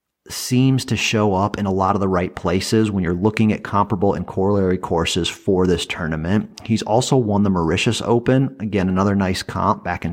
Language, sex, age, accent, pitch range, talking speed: English, male, 40-59, American, 90-110 Hz, 200 wpm